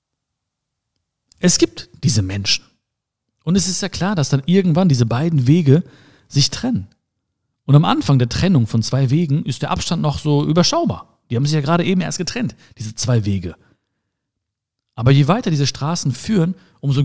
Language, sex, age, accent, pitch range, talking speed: German, male, 40-59, German, 115-155 Hz, 175 wpm